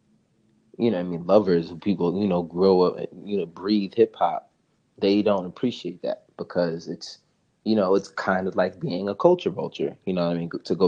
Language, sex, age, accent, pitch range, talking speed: English, male, 20-39, American, 90-105 Hz, 225 wpm